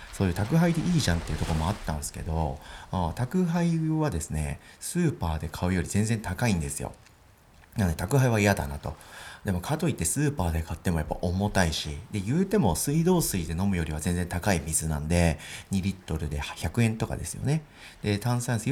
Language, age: Japanese, 40-59